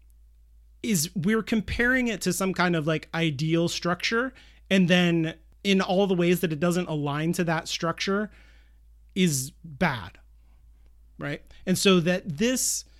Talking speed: 145 wpm